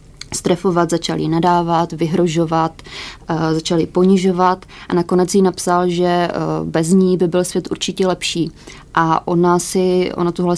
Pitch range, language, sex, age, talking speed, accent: 170-180 Hz, Czech, female, 30-49, 135 wpm, native